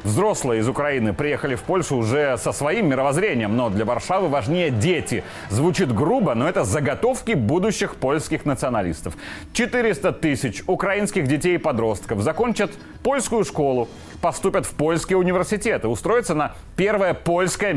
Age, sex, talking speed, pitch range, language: 30-49, male, 135 wpm, 140-190 Hz, Russian